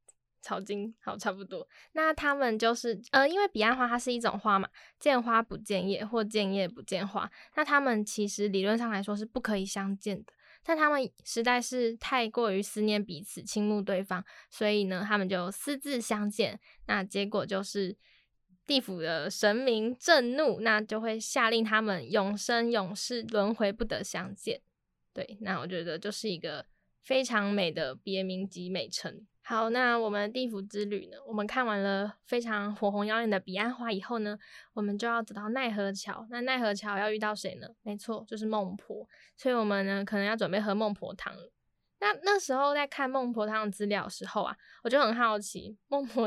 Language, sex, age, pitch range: Chinese, female, 10-29, 200-235 Hz